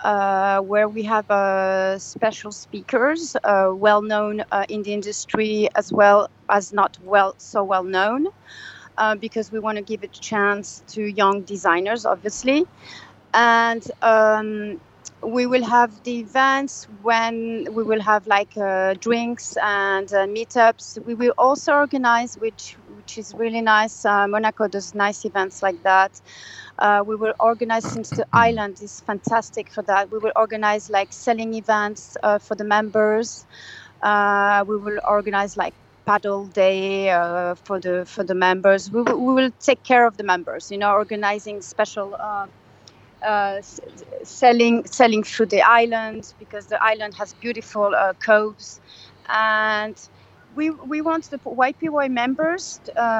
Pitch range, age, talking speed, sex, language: 200-230 Hz, 30-49, 155 wpm, female, English